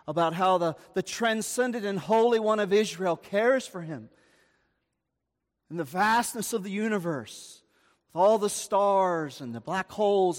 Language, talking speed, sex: English, 155 wpm, male